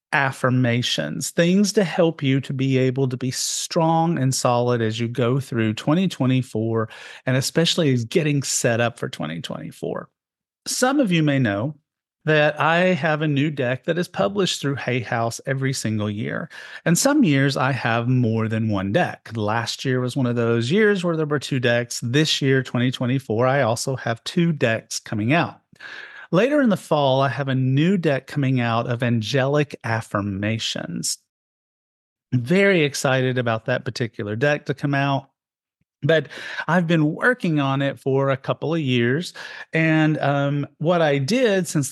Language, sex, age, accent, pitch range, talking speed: English, male, 40-59, American, 120-155 Hz, 165 wpm